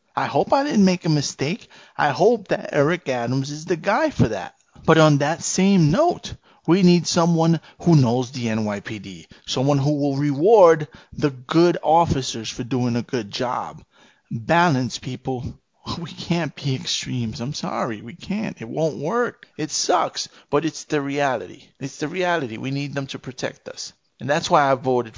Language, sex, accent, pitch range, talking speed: English, male, American, 125-160 Hz, 175 wpm